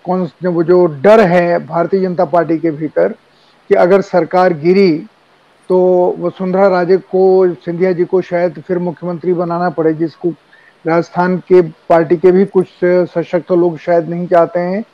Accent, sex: native, male